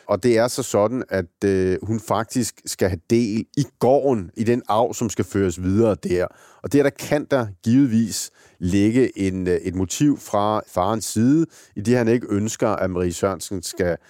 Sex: male